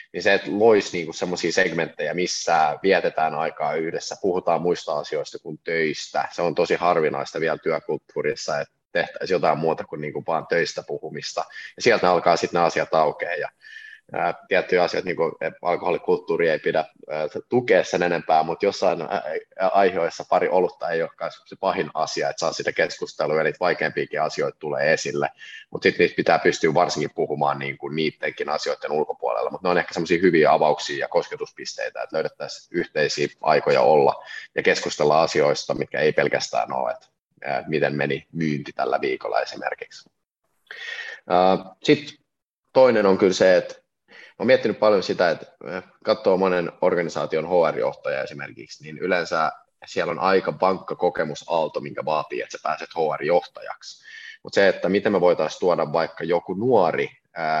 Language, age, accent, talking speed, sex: Finnish, 30-49, native, 150 wpm, male